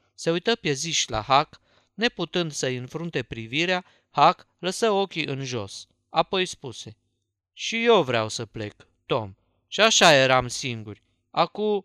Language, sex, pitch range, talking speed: Romanian, male, 115-190 Hz, 135 wpm